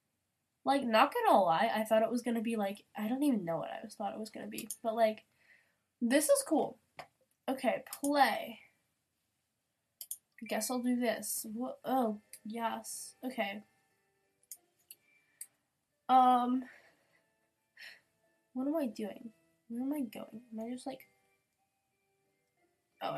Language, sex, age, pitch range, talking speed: English, female, 10-29, 215-275 Hz, 135 wpm